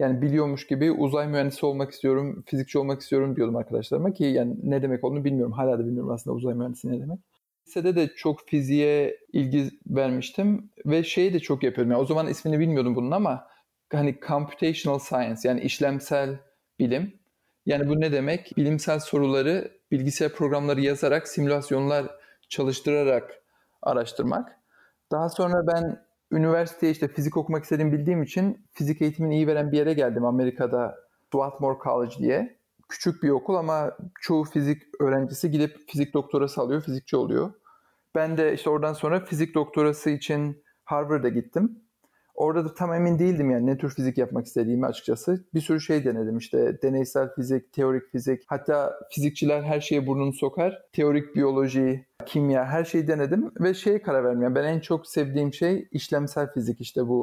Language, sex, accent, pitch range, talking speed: Turkish, male, native, 135-160 Hz, 160 wpm